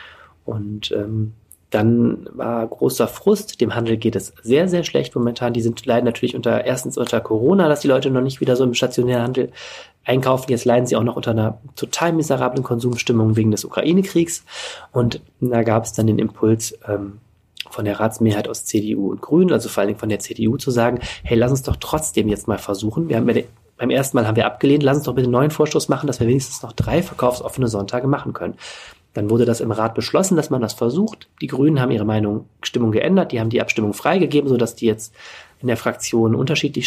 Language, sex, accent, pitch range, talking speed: German, male, German, 110-130 Hz, 215 wpm